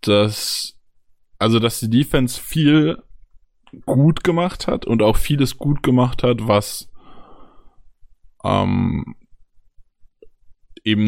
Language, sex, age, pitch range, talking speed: German, male, 20-39, 105-130 Hz, 95 wpm